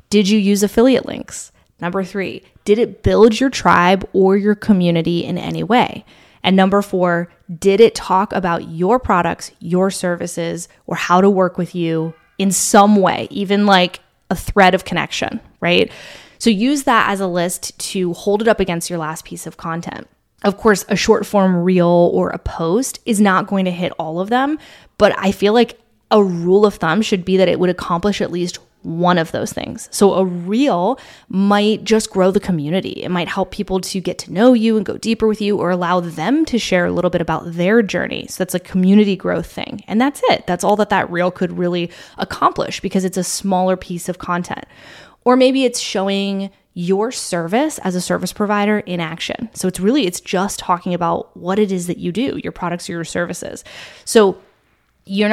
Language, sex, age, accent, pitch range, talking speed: English, female, 10-29, American, 175-210 Hz, 200 wpm